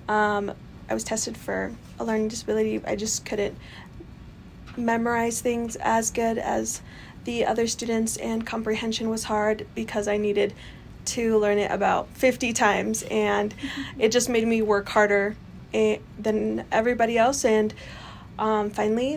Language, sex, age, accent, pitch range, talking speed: English, female, 20-39, American, 210-235 Hz, 140 wpm